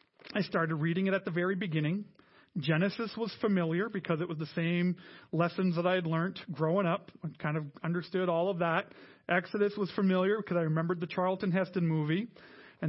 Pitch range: 160-190 Hz